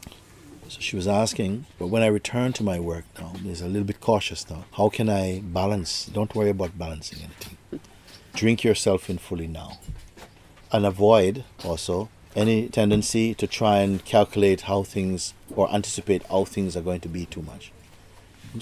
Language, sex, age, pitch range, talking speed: English, male, 50-69, 90-110 Hz, 175 wpm